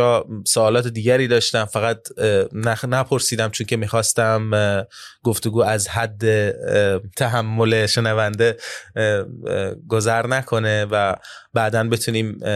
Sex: male